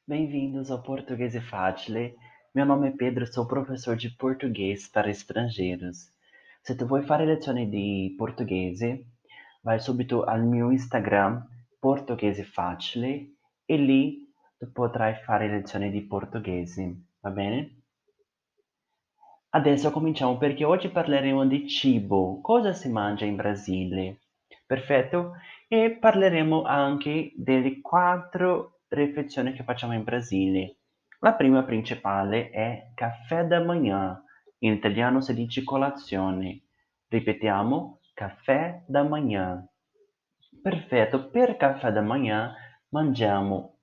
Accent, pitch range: native, 105-150 Hz